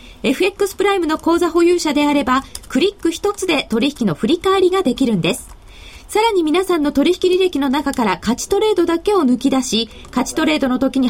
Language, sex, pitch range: Japanese, female, 260-360 Hz